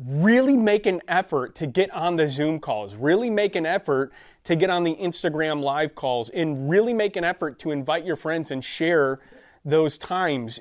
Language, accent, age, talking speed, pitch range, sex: English, American, 30-49, 190 wpm, 145-185 Hz, male